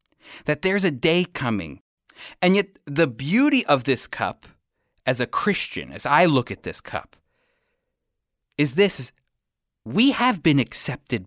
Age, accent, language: 30-49, American, English